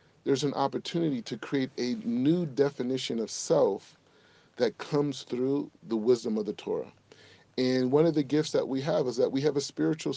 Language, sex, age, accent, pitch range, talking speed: English, male, 30-49, American, 130-165 Hz, 190 wpm